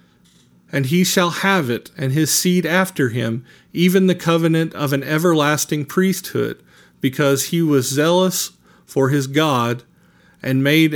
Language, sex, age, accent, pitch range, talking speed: English, male, 40-59, American, 125-165 Hz, 140 wpm